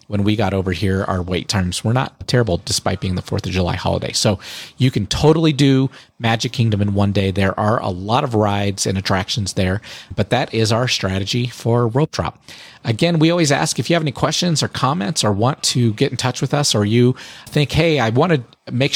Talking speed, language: 225 wpm, English